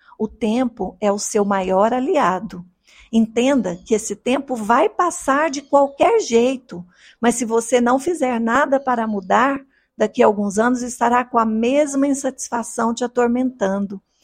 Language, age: Portuguese, 50-69